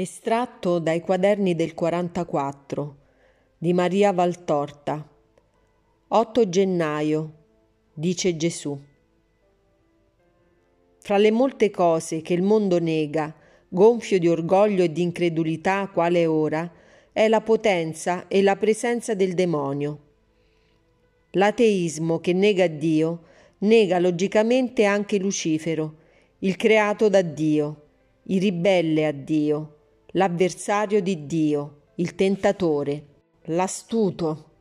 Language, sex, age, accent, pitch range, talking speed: Italian, female, 40-59, native, 160-205 Hz, 100 wpm